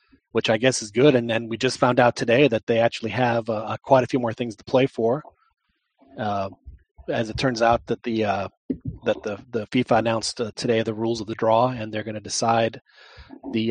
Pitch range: 115-145 Hz